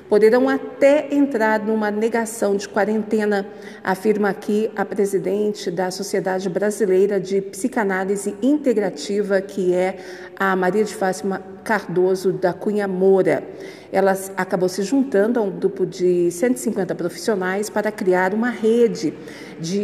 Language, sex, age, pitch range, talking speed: Portuguese, female, 50-69, 190-220 Hz, 125 wpm